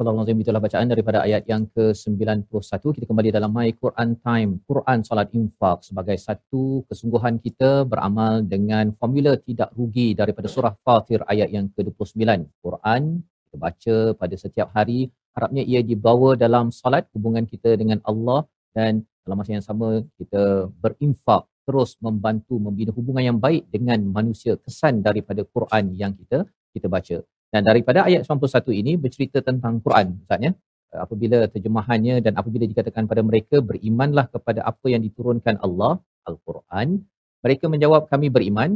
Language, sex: Malayalam, male